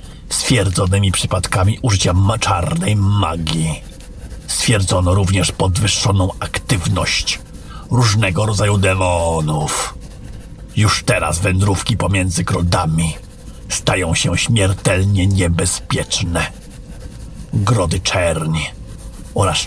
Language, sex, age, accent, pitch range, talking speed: Polish, male, 50-69, native, 90-105 Hz, 75 wpm